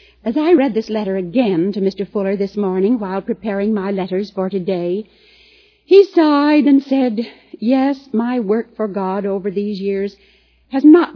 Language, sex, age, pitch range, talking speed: English, female, 60-79, 185-275 Hz, 165 wpm